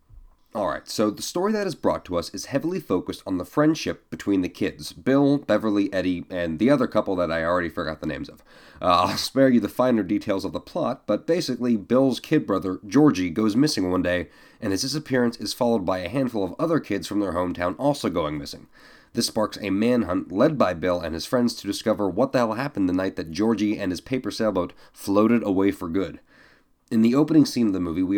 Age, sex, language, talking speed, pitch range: 30-49, male, English, 225 wpm, 95-135 Hz